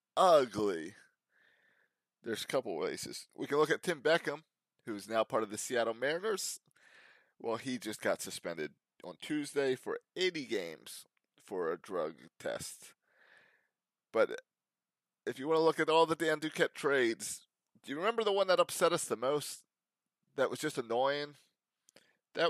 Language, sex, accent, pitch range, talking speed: English, male, American, 115-170 Hz, 155 wpm